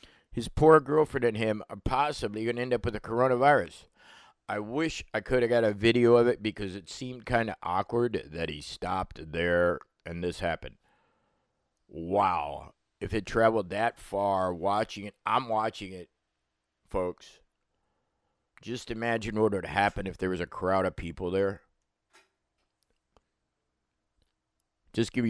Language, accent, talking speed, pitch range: English, American, 150 wpm, 90-110 Hz